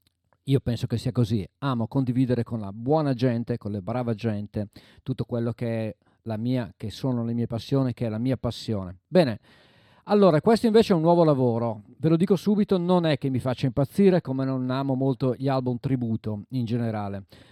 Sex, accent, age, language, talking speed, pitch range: male, native, 40-59, Italian, 200 wpm, 115-150 Hz